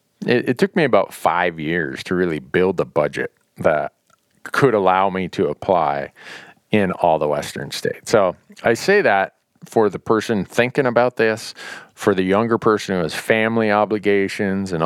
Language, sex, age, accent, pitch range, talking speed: English, male, 40-59, American, 95-120 Hz, 165 wpm